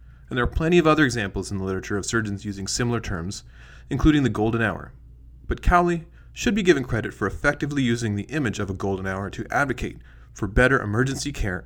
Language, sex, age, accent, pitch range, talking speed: English, male, 30-49, American, 95-130 Hz, 205 wpm